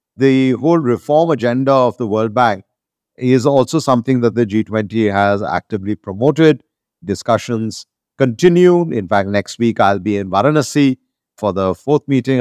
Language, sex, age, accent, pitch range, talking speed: English, male, 50-69, Indian, 110-135 Hz, 150 wpm